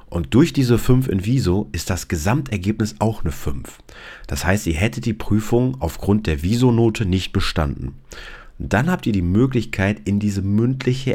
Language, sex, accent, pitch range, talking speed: German, male, German, 85-115 Hz, 165 wpm